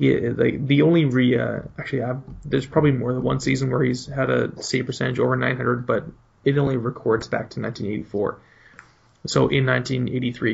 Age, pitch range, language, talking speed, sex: 20-39, 115-130 Hz, English, 180 wpm, male